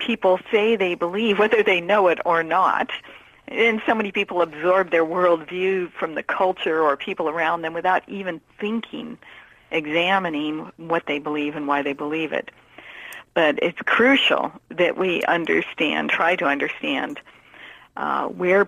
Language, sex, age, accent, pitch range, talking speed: English, female, 50-69, American, 165-205 Hz, 150 wpm